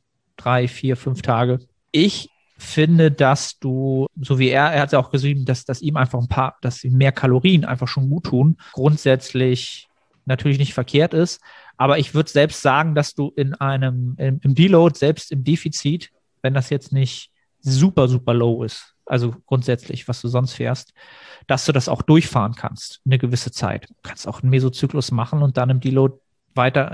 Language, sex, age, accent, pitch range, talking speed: German, male, 40-59, German, 125-145 Hz, 190 wpm